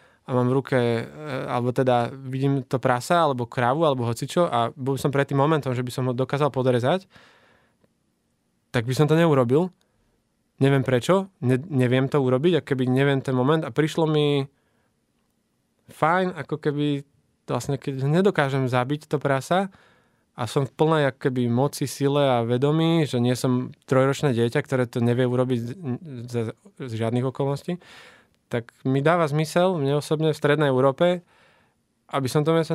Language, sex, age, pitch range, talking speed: Slovak, male, 20-39, 125-155 Hz, 160 wpm